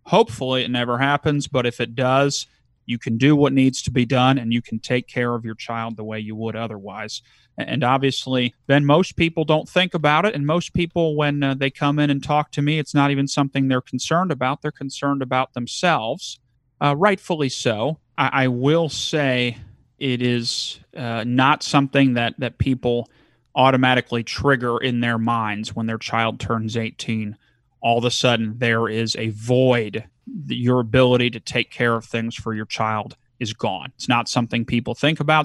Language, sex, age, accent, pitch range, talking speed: English, male, 30-49, American, 115-140 Hz, 190 wpm